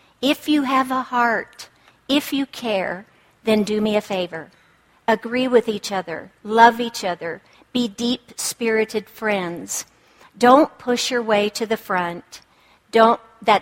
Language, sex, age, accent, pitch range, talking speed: English, female, 50-69, American, 195-245 Hz, 140 wpm